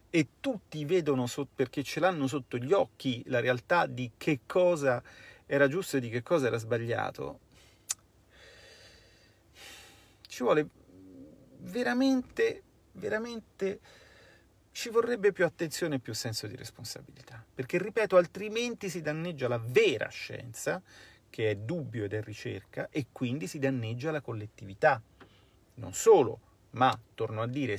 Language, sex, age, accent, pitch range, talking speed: Italian, male, 40-59, native, 115-155 Hz, 125 wpm